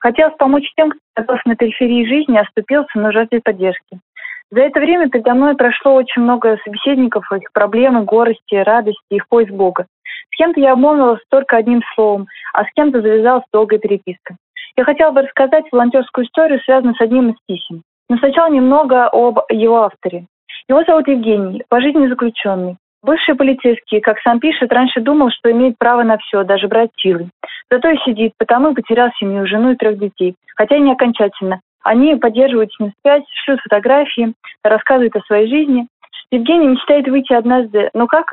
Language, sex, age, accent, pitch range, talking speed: Russian, female, 20-39, native, 215-275 Hz, 165 wpm